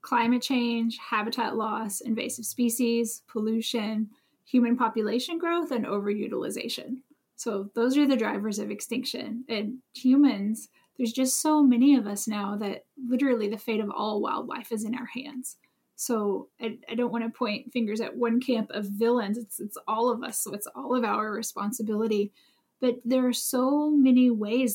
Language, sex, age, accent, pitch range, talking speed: English, female, 10-29, American, 215-250 Hz, 165 wpm